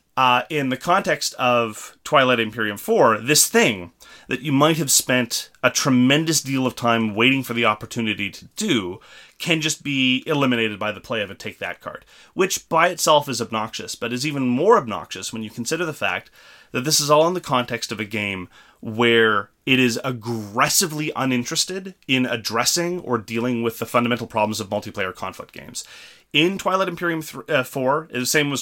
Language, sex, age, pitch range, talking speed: English, male, 30-49, 115-150 Hz, 185 wpm